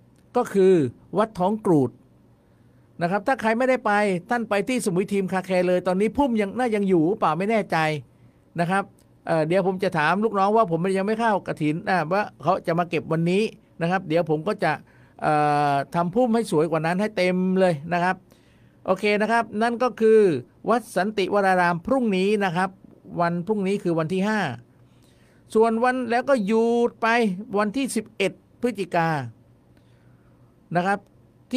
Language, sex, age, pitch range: Thai, male, 50-69, 165-220 Hz